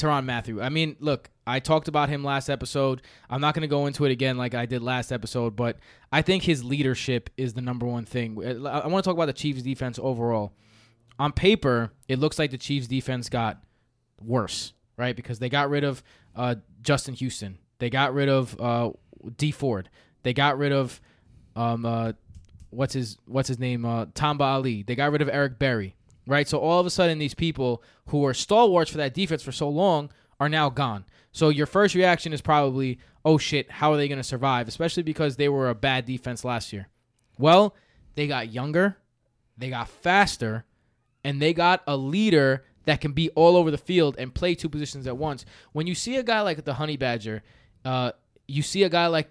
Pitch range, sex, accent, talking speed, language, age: 120-150 Hz, male, American, 210 wpm, English, 20-39